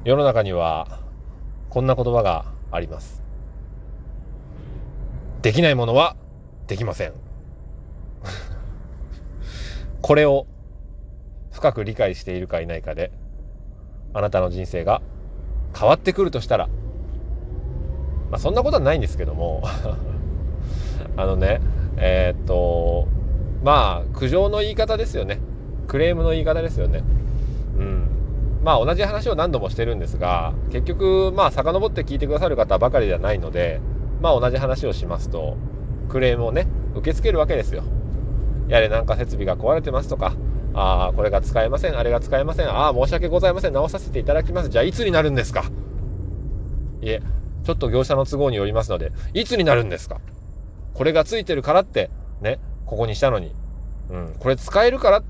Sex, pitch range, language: male, 75-120 Hz, Japanese